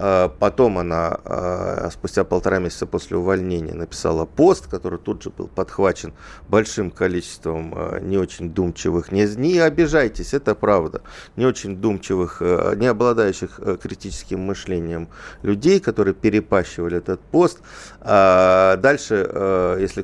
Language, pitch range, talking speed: Russian, 85-105 Hz, 115 wpm